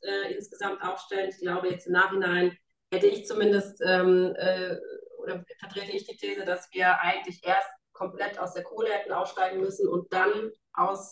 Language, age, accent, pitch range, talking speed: German, 30-49, German, 185-210 Hz, 165 wpm